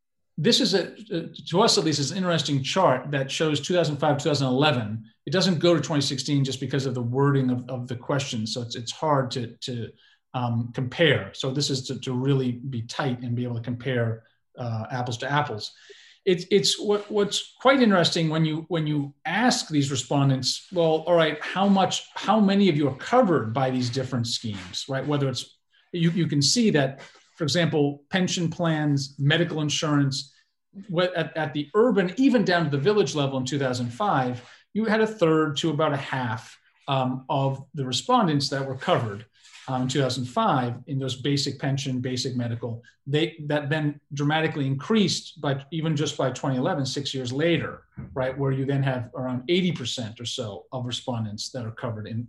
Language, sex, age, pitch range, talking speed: English, male, 40-59, 130-170 Hz, 185 wpm